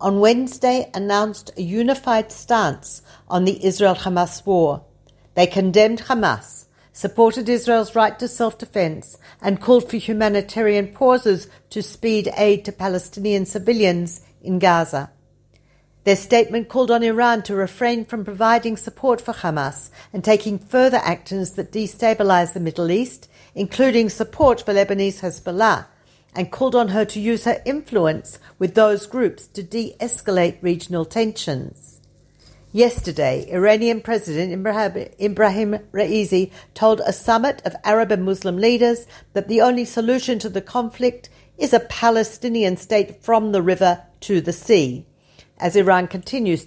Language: Hebrew